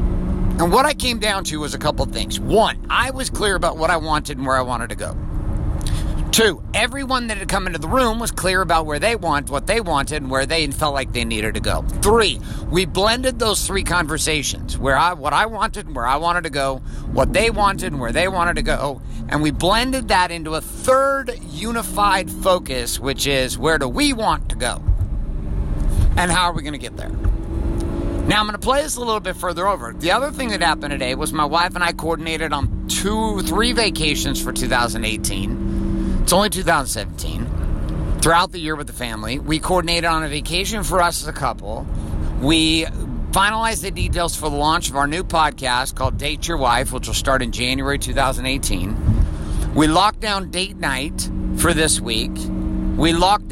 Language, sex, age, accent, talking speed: English, male, 50-69, American, 205 wpm